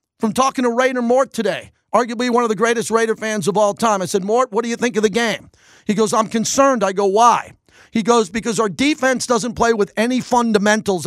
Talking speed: 235 wpm